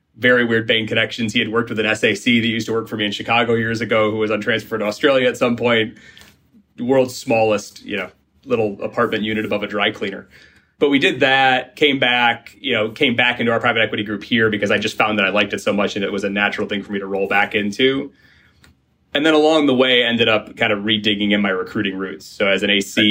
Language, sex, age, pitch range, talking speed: English, male, 30-49, 100-115 Hz, 255 wpm